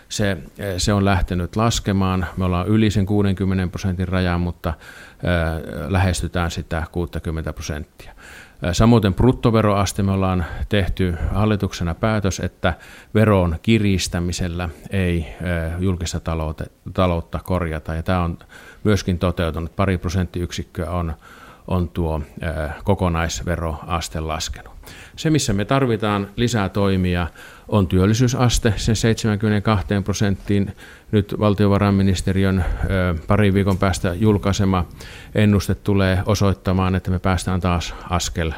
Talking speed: 105 wpm